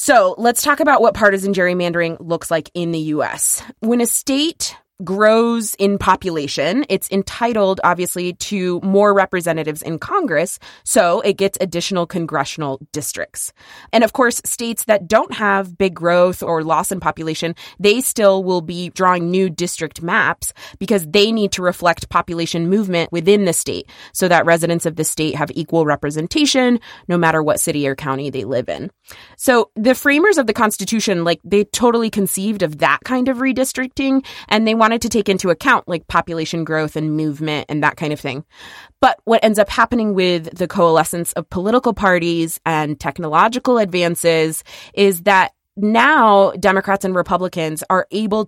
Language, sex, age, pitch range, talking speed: English, female, 20-39, 165-210 Hz, 165 wpm